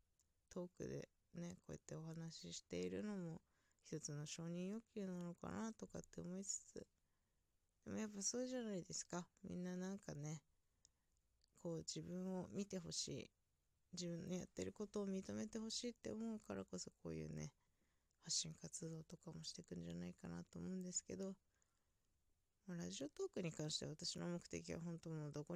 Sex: female